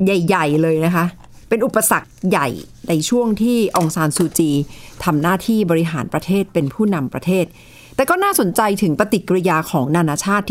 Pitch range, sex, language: 160-220 Hz, female, Thai